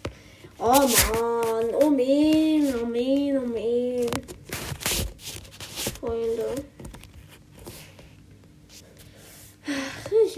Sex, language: female, German